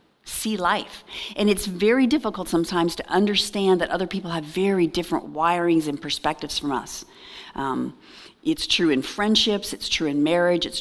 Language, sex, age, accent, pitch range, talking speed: English, female, 40-59, American, 180-260 Hz, 165 wpm